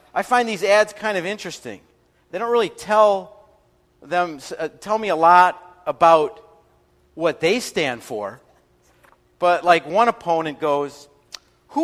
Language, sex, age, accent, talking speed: English, male, 50-69, American, 140 wpm